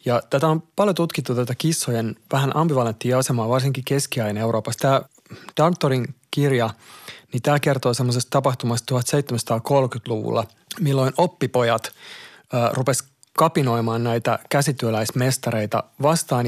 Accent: native